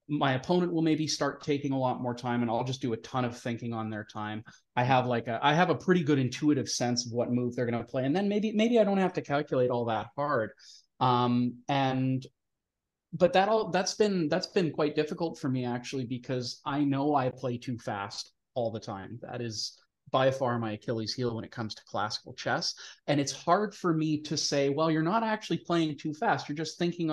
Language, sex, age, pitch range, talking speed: English, male, 30-49, 120-150 Hz, 230 wpm